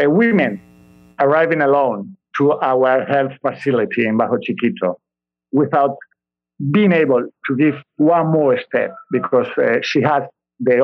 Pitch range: 125-165 Hz